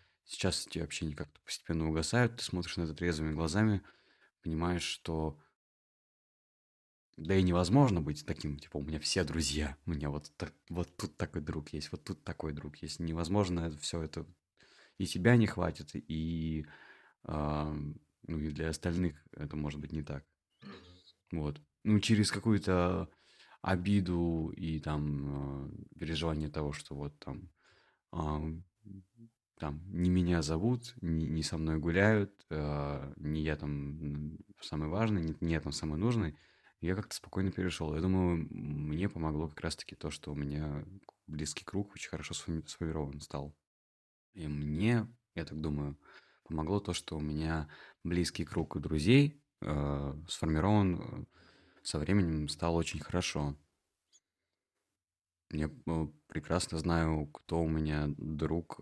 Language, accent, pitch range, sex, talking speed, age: Russian, native, 75-90 Hz, male, 145 wpm, 20-39